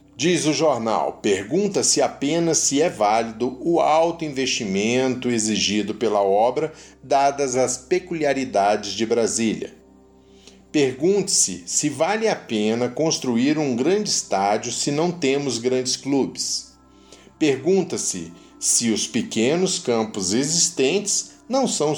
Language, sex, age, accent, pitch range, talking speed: Portuguese, male, 40-59, Brazilian, 110-160 Hz, 110 wpm